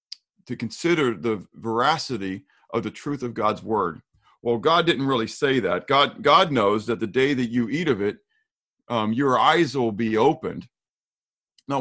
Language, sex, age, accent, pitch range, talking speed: English, male, 50-69, American, 115-155 Hz, 175 wpm